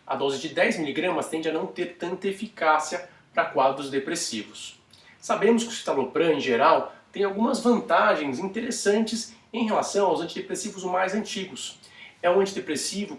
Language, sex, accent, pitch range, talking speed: Portuguese, male, Brazilian, 150-205 Hz, 145 wpm